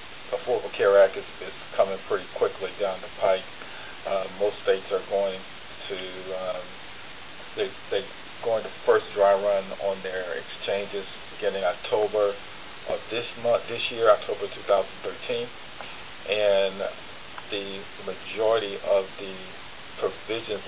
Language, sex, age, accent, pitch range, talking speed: English, male, 40-59, American, 95-105 Hz, 130 wpm